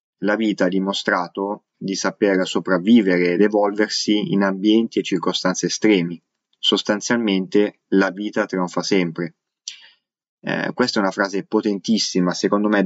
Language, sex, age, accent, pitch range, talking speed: Italian, male, 20-39, native, 95-110 Hz, 125 wpm